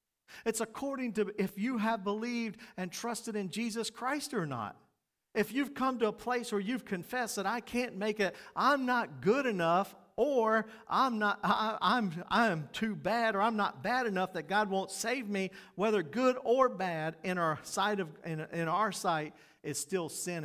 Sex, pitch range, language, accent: male, 160-220 Hz, English, American